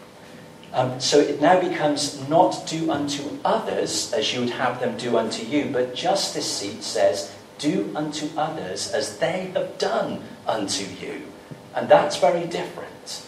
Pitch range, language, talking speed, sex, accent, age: 120-155 Hz, English, 155 wpm, male, British, 40-59